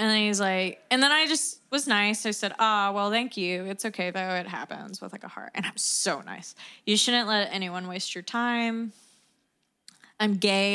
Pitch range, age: 185-220 Hz, 20-39